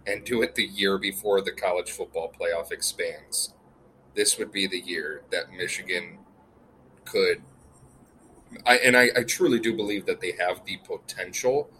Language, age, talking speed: English, 30-49, 160 wpm